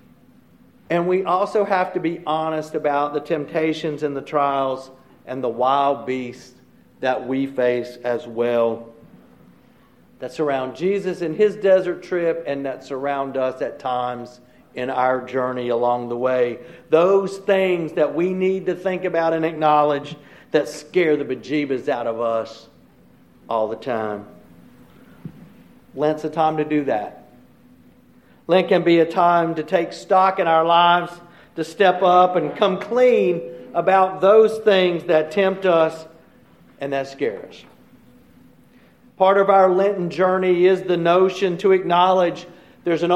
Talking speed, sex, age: 145 wpm, male, 50-69